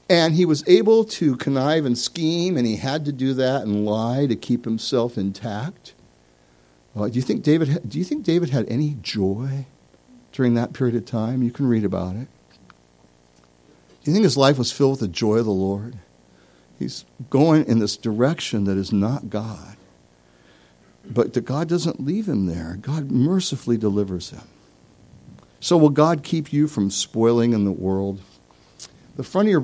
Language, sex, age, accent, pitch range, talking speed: English, male, 60-79, American, 100-135 Hz, 180 wpm